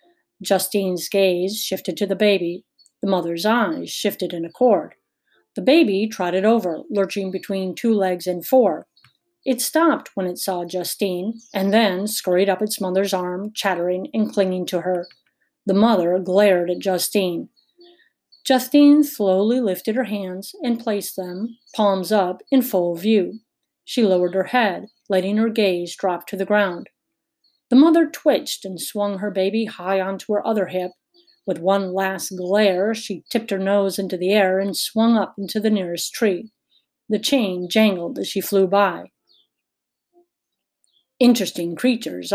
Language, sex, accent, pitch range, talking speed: English, female, American, 185-230 Hz, 155 wpm